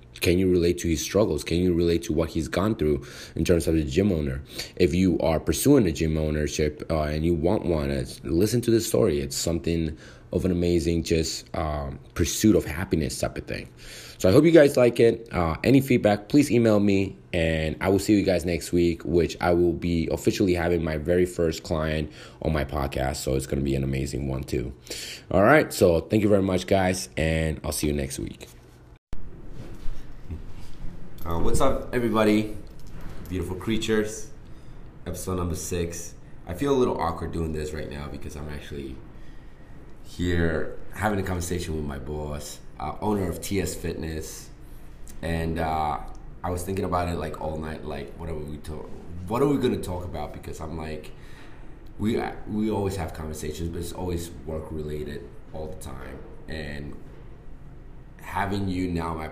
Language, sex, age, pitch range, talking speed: English, male, 20-39, 75-90 Hz, 180 wpm